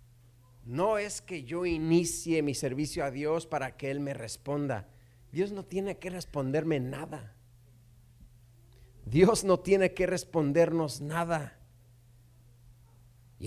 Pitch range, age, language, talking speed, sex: 120-165 Hz, 40-59, Spanish, 120 wpm, male